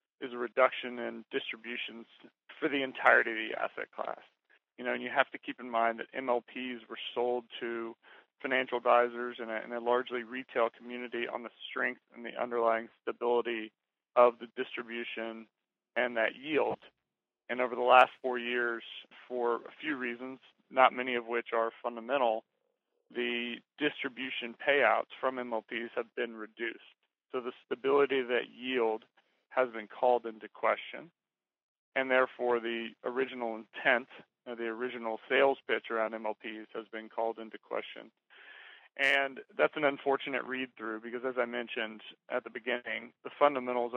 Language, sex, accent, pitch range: English, male, American, 115-125 Hz